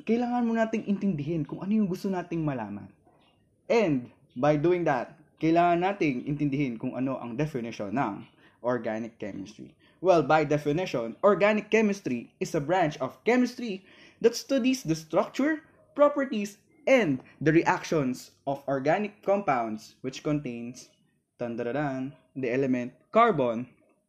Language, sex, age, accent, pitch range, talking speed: English, male, 20-39, Filipino, 135-205 Hz, 125 wpm